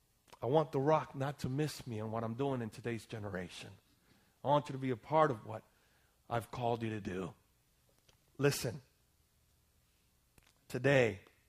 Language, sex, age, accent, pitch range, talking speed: English, male, 40-59, American, 105-145 Hz, 160 wpm